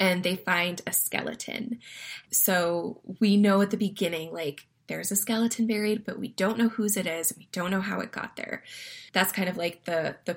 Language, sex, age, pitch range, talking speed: English, female, 20-39, 180-215 Hz, 210 wpm